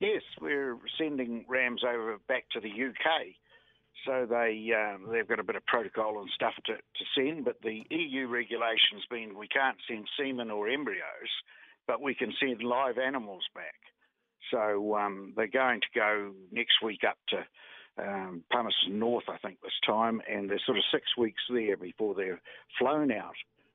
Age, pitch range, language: 60-79, 100-120 Hz, English